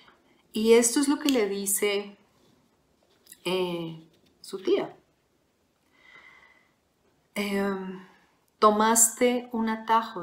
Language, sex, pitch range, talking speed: Spanish, female, 185-240 Hz, 80 wpm